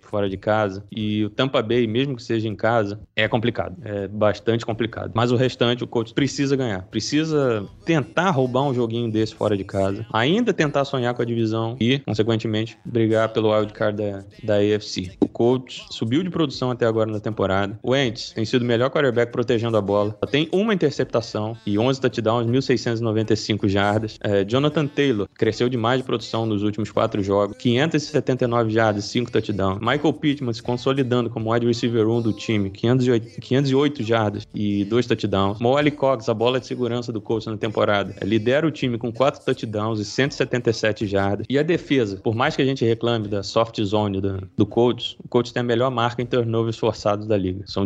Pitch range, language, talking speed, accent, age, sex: 105-130 Hz, Portuguese, 195 wpm, Brazilian, 20-39, male